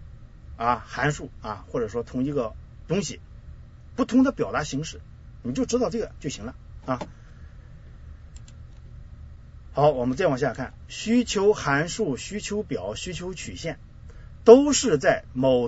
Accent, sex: native, male